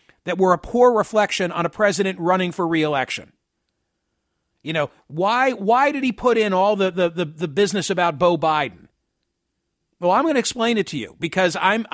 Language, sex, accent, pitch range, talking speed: English, male, American, 180-235 Hz, 190 wpm